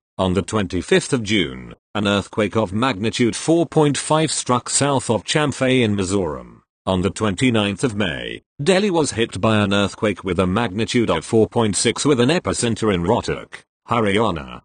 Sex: male